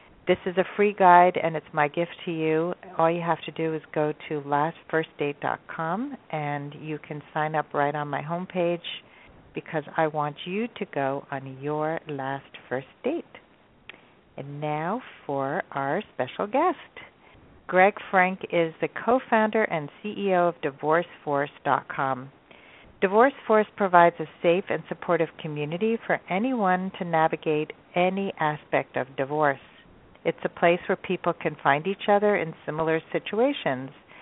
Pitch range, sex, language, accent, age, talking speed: 145-185 Hz, female, English, American, 50-69, 145 wpm